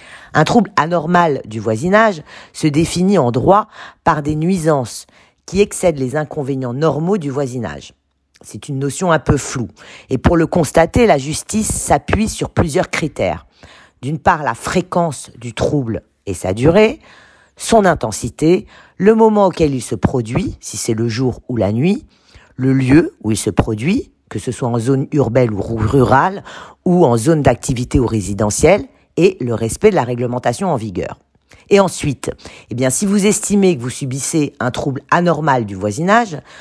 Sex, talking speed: female, 165 wpm